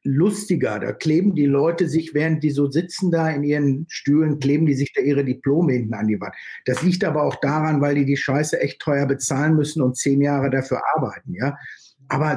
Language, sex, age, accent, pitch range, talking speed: German, male, 60-79, German, 145-205 Hz, 215 wpm